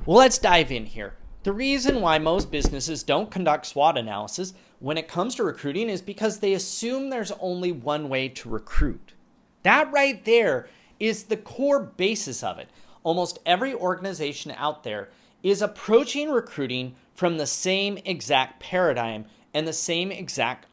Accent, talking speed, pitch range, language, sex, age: American, 160 wpm, 145-200 Hz, English, male, 30-49